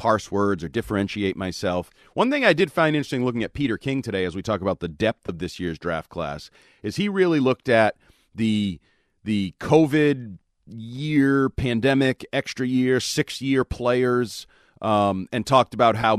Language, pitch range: English, 100-130 Hz